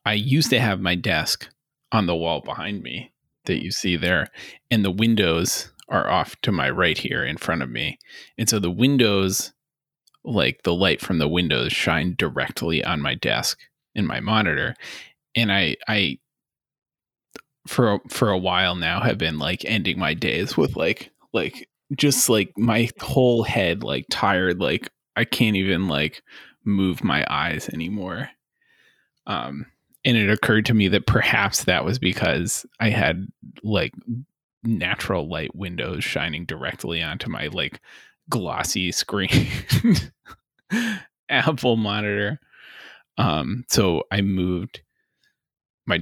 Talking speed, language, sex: 145 wpm, English, male